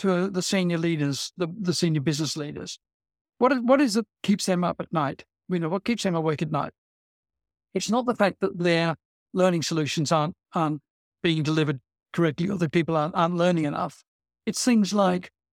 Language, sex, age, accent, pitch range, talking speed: English, male, 60-79, British, 155-195 Hz, 195 wpm